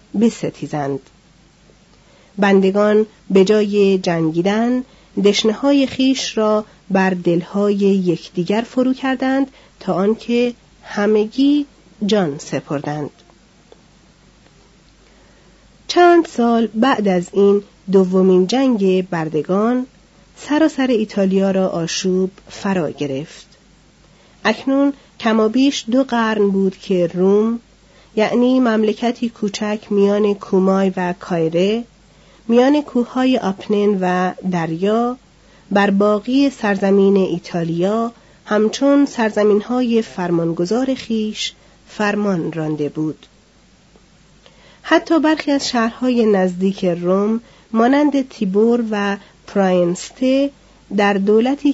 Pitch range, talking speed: 185-235 Hz, 85 wpm